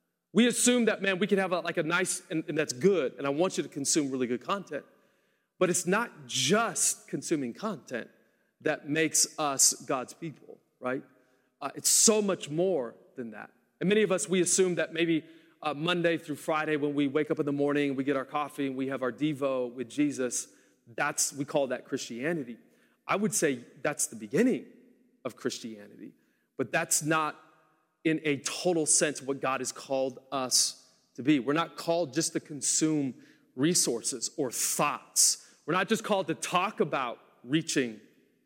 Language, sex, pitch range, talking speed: English, male, 140-175 Hz, 180 wpm